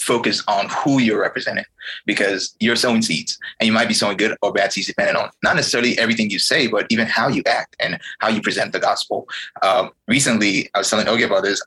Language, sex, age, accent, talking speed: English, male, 20-39, American, 220 wpm